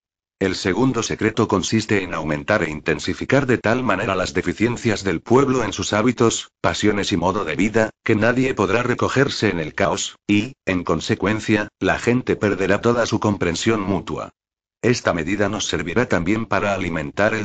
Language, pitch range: Spanish, 90-115 Hz